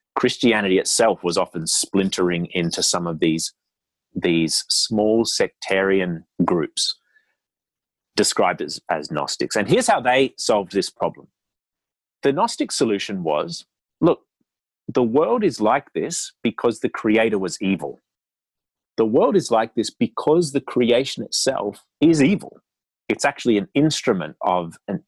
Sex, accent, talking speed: male, Australian, 135 wpm